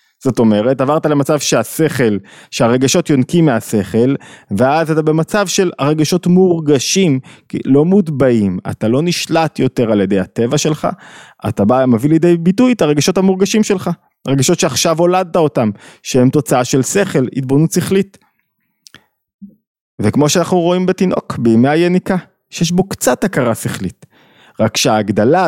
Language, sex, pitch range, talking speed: Hebrew, male, 120-170 Hz, 135 wpm